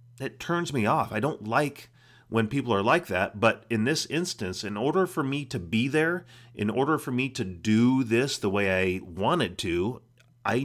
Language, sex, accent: English, male, American